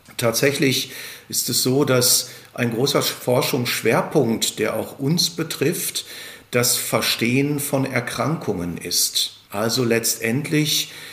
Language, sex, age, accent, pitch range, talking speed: German, male, 50-69, German, 120-145 Hz, 100 wpm